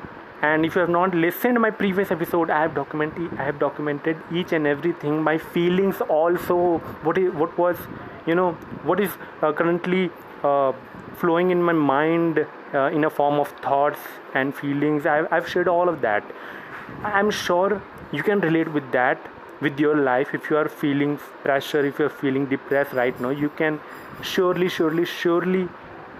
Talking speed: 180 wpm